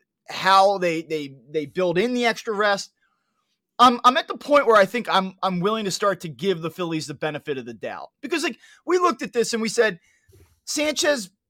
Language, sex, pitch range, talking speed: English, male, 195-250 Hz, 215 wpm